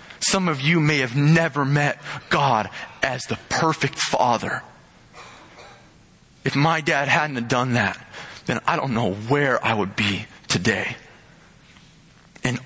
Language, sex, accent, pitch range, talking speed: English, male, American, 115-145 Hz, 135 wpm